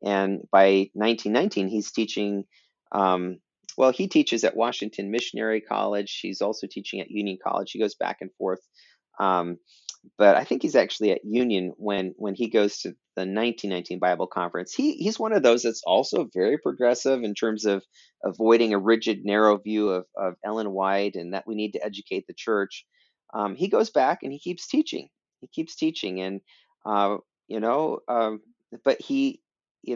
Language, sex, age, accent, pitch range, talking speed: English, male, 30-49, American, 100-120 Hz, 180 wpm